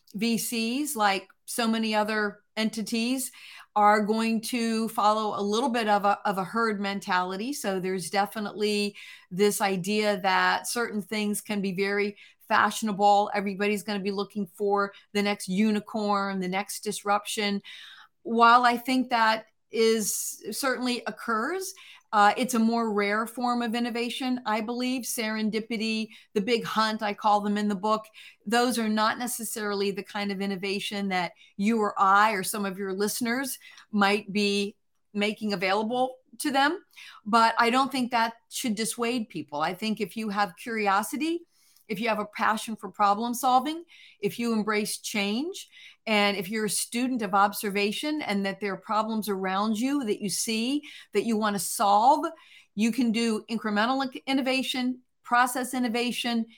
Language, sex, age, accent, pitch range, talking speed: English, female, 40-59, American, 205-235 Hz, 155 wpm